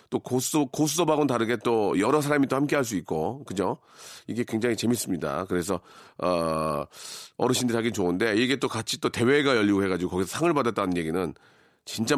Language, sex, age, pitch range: Korean, male, 40-59, 105-160 Hz